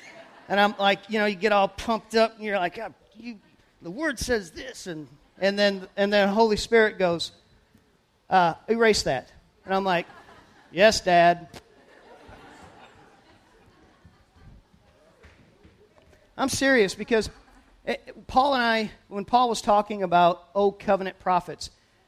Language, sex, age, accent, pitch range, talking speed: English, male, 40-59, American, 190-255 Hz, 135 wpm